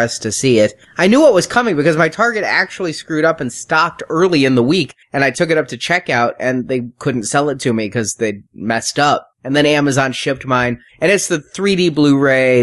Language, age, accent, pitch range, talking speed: English, 30-49, American, 110-140 Hz, 230 wpm